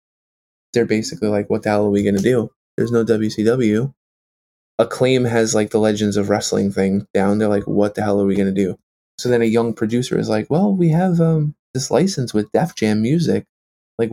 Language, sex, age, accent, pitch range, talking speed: English, male, 20-39, American, 105-115 Hz, 215 wpm